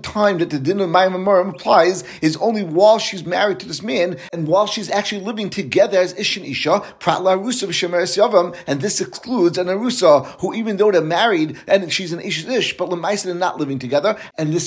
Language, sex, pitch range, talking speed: English, male, 175-205 Hz, 200 wpm